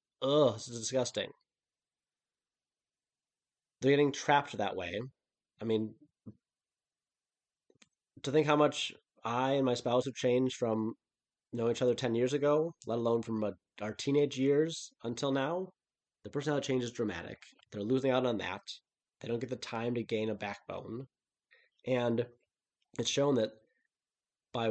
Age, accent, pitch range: 20-39, American, 110-140 Hz